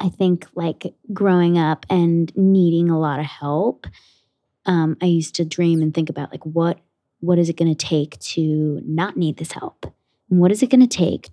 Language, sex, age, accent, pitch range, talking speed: English, female, 20-39, American, 155-180 Hz, 200 wpm